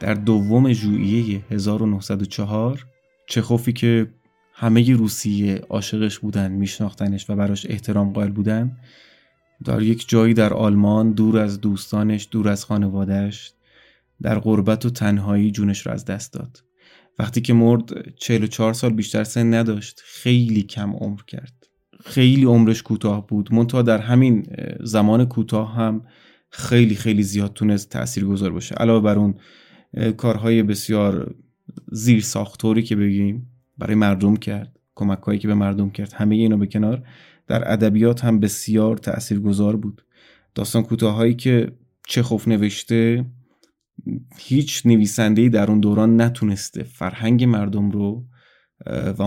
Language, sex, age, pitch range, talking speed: Persian, male, 20-39, 100-115 Hz, 130 wpm